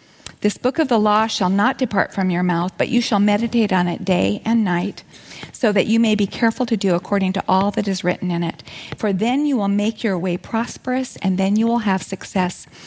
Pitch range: 185-225 Hz